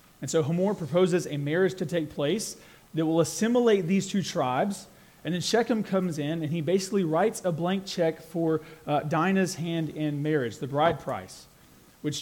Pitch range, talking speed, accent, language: 150-195 Hz, 180 wpm, American, English